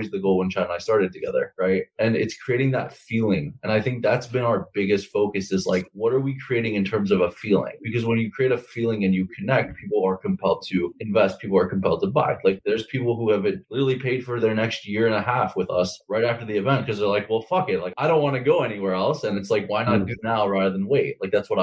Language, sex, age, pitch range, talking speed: English, male, 20-39, 100-130 Hz, 275 wpm